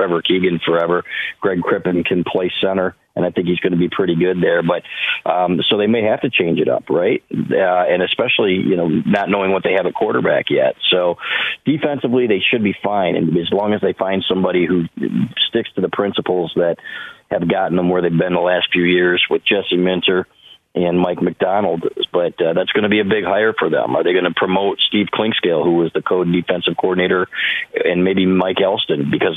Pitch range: 85-95 Hz